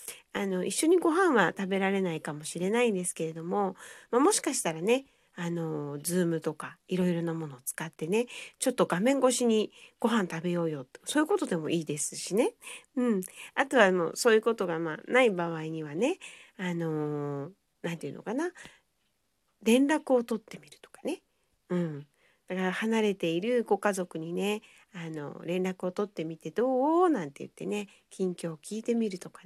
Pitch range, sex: 170-240 Hz, female